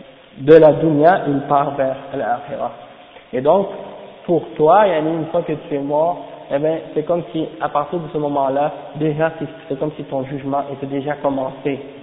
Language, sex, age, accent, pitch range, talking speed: French, male, 50-69, French, 145-180 Hz, 185 wpm